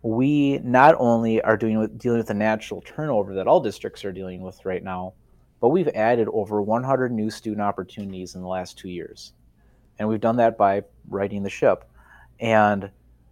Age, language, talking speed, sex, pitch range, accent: 30-49, English, 185 wpm, male, 95-120 Hz, American